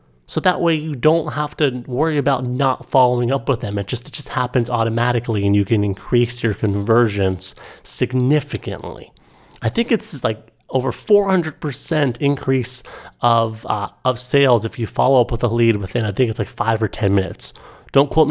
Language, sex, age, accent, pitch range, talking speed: English, male, 30-49, American, 110-135 Hz, 185 wpm